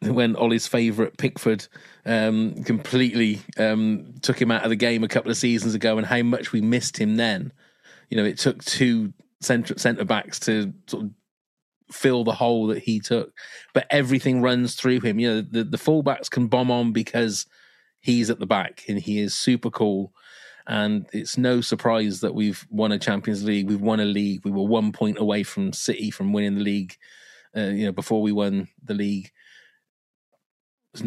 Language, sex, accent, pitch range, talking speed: English, male, British, 105-125 Hz, 185 wpm